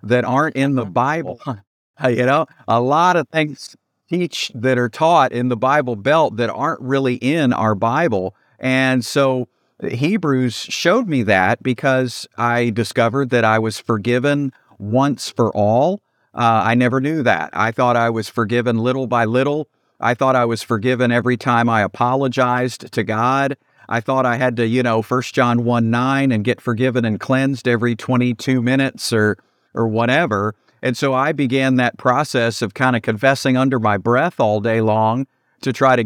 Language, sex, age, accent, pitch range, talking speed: English, male, 50-69, American, 115-130 Hz, 180 wpm